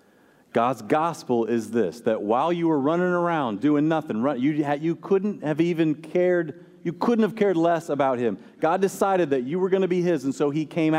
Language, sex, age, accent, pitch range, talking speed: English, male, 40-59, American, 165-215 Hz, 200 wpm